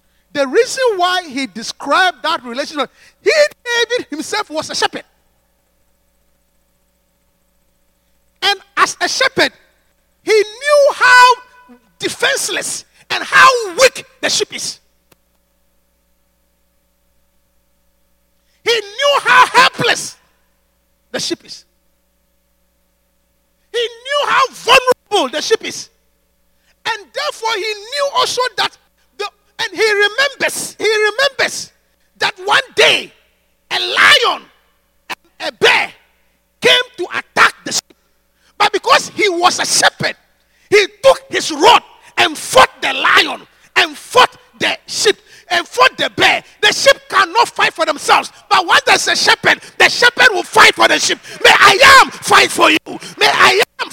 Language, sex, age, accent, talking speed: English, male, 40-59, Nigerian, 125 wpm